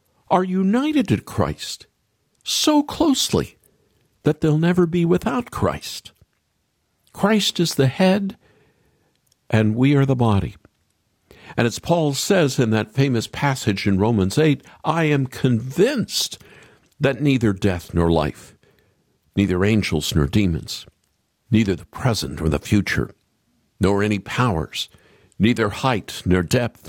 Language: English